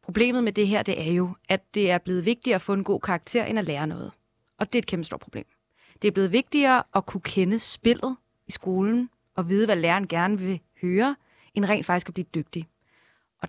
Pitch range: 195-240 Hz